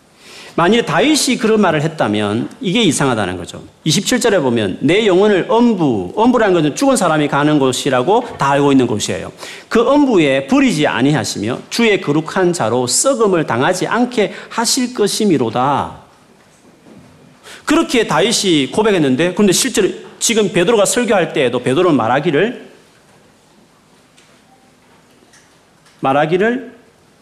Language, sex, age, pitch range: Korean, male, 40-59, 140-230 Hz